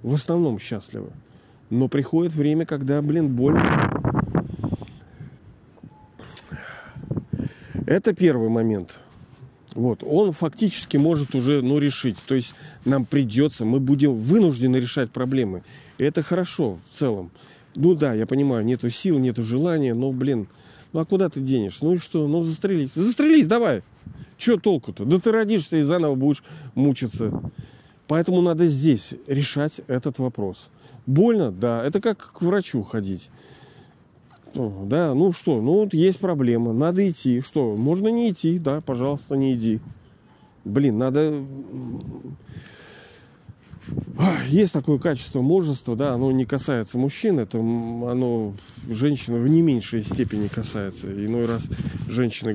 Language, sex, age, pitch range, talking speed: Russian, male, 40-59, 120-160 Hz, 130 wpm